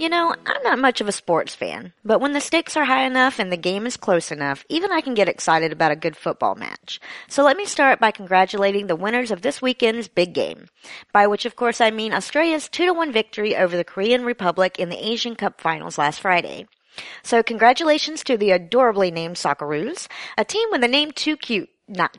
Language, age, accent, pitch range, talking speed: English, 40-59, American, 175-255 Hz, 215 wpm